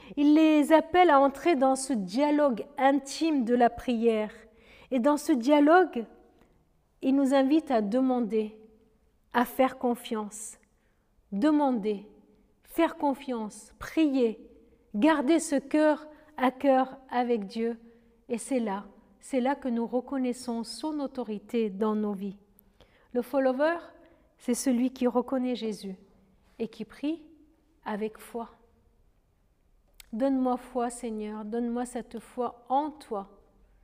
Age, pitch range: 50-69, 220-265 Hz